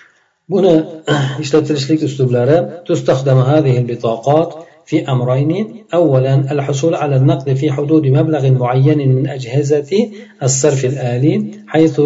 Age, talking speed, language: 50-69, 105 wpm, Russian